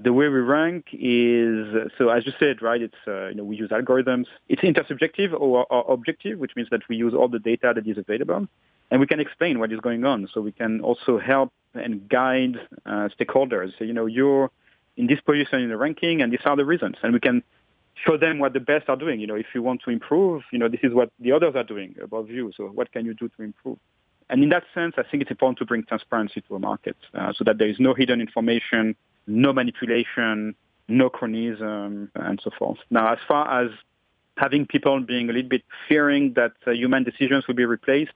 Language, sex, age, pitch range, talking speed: English, male, 40-59, 115-140 Hz, 230 wpm